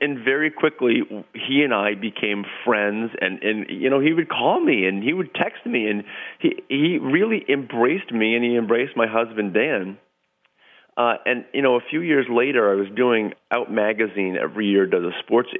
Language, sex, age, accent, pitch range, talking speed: English, male, 40-59, American, 100-125 Hz, 195 wpm